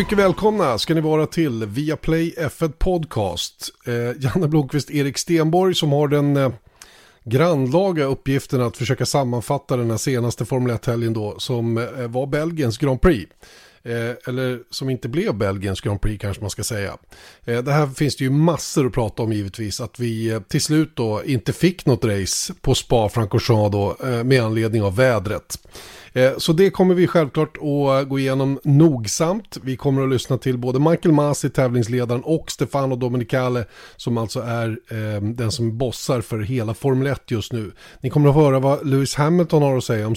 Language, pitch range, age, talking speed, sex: Swedish, 120-150 Hz, 30-49, 180 wpm, male